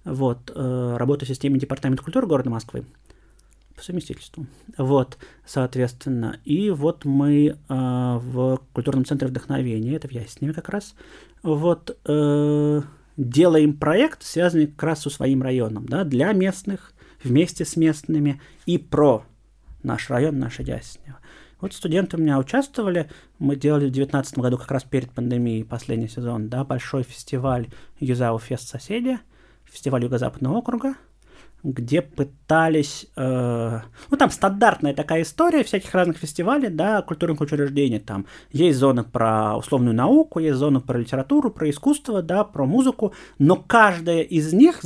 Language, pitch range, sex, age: Russian, 130-170 Hz, male, 30-49